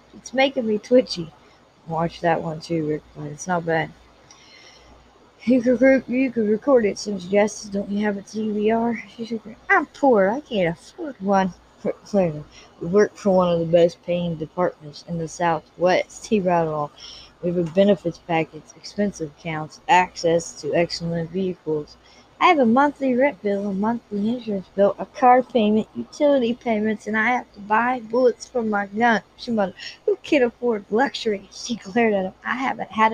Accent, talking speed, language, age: American, 175 wpm, English, 20-39